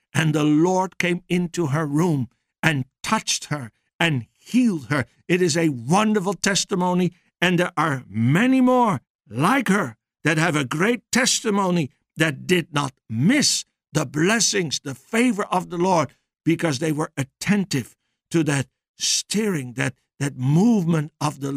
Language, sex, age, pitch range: English, male, 60-79, 150-200 Hz